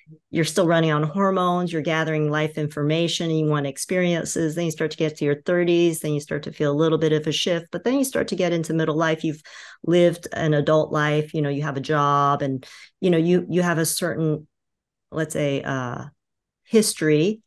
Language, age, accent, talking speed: English, 40-59, American, 220 wpm